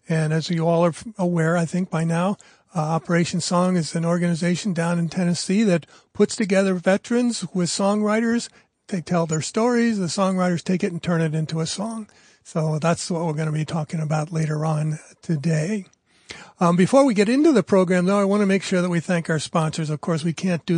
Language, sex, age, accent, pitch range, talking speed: English, male, 40-59, American, 165-195 Hz, 215 wpm